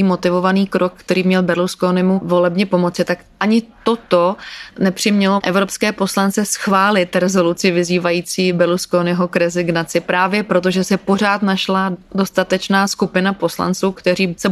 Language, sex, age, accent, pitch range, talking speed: Czech, female, 30-49, native, 175-190 Hz, 120 wpm